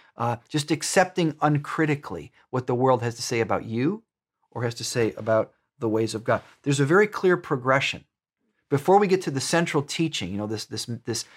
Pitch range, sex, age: 130-175 Hz, male, 40-59